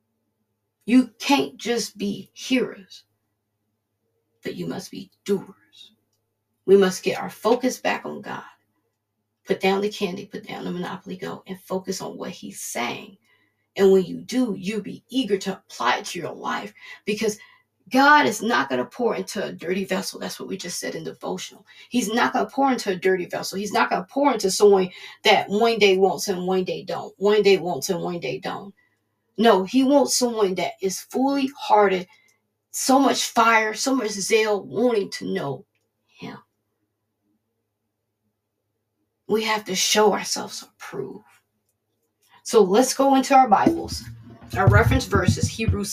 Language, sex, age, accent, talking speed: English, female, 40-59, American, 170 wpm